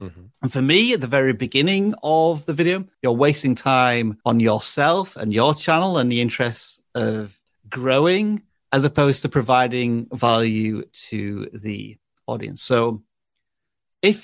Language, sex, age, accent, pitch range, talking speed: English, male, 30-49, British, 115-150 Hz, 140 wpm